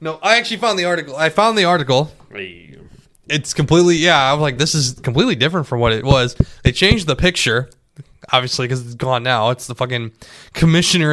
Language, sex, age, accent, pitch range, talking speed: English, male, 20-39, American, 125-170 Hz, 200 wpm